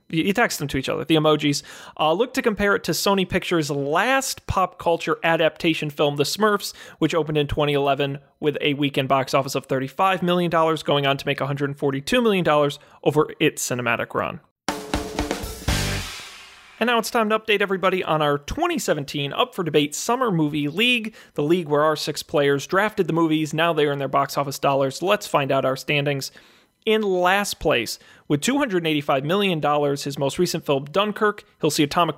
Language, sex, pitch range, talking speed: English, male, 145-200 Hz, 175 wpm